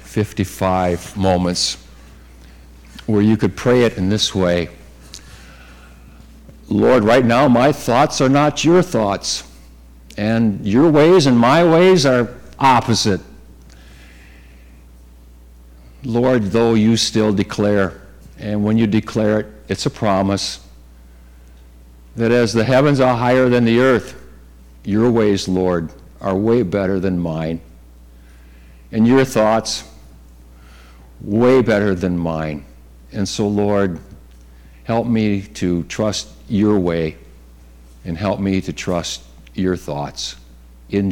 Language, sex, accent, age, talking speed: English, male, American, 60-79, 120 wpm